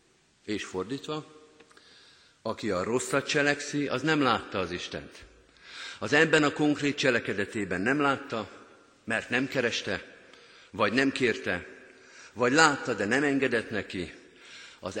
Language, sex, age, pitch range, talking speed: Hungarian, male, 50-69, 105-145 Hz, 125 wpm